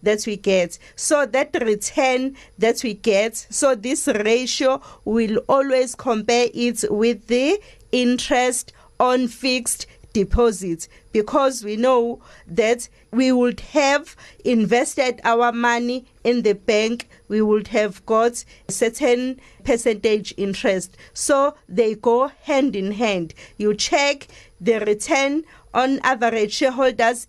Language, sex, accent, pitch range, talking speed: English, female, South African, 220-265 Hz, 125 wpm